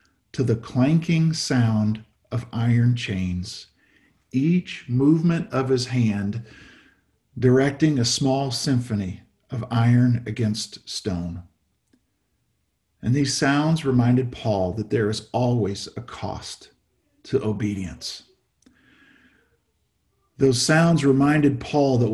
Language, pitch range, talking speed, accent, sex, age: English, 110-135 Hz, 105 wpm, American, male, 50-69